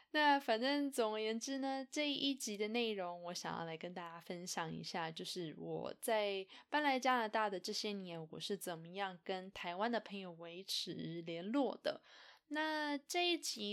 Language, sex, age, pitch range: Chinese, female, 10-29, 185-260 Hz